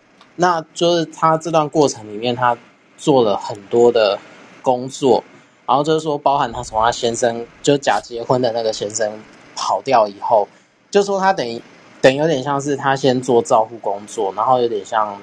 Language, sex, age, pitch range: Chinese, male, 20-39, 115-140 Hz